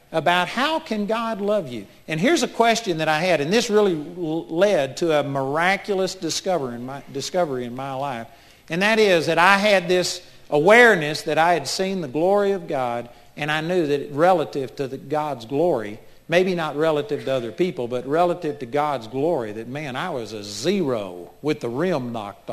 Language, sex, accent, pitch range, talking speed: English, male, American, 130-185 Hz, 185 wpm